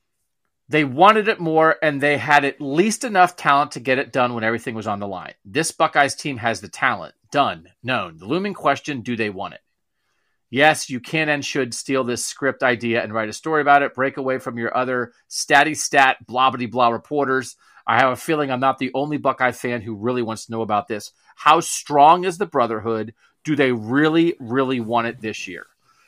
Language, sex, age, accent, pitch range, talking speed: English, male, 30-49, American, 125-160 Hz, 210 wpm